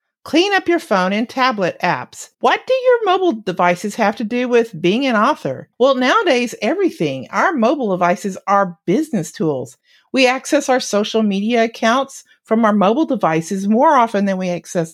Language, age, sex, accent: English, 50-69, female, American